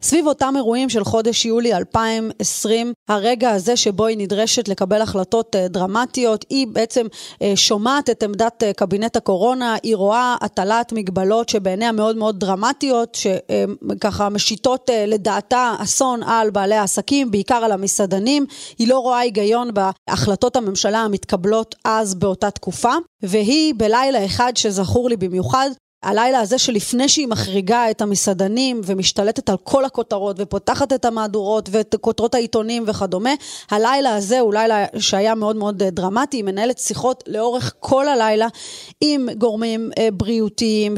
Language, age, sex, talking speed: Hebrew, 30-49, female, 130 wpm